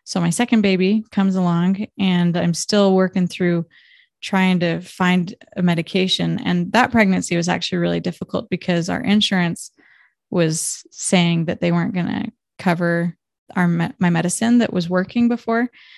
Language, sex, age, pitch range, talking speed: English, female, 20-39, 175-205 Hz, 150 wpm